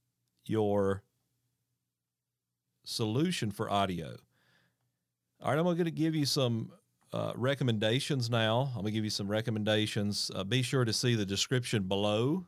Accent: American